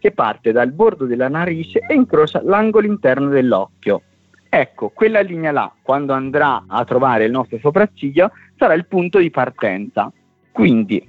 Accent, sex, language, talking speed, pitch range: native, male, Italian, 145 wpm, 115-175 Hz